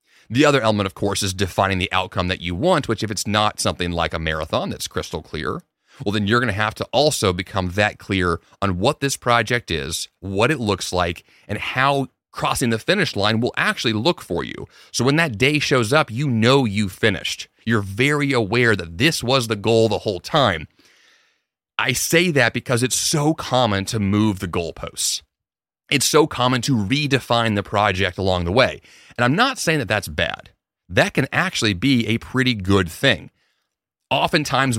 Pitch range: 100-135 Hz